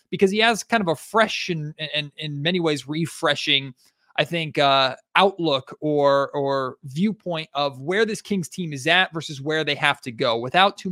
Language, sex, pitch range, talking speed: English, male, 130-165 Hz, 200 wpm